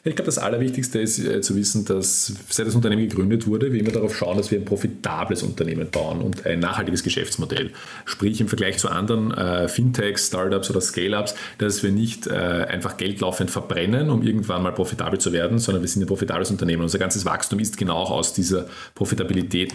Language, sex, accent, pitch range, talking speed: German, male, Austrian, 95-115 Hz, 200 wpm